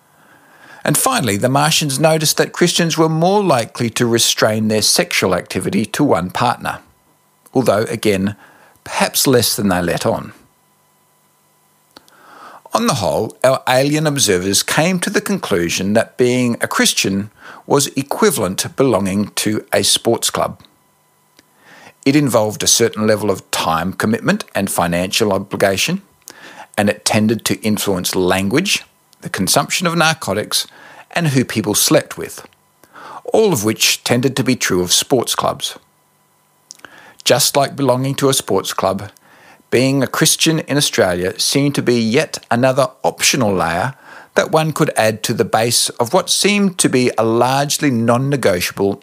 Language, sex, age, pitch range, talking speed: English, male, 50-69, 105-145 Hz, 145 wpm